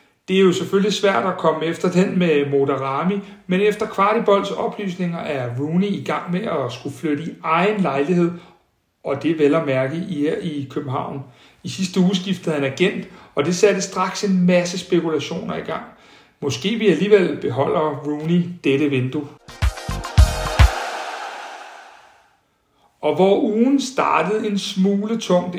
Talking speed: 150 wpm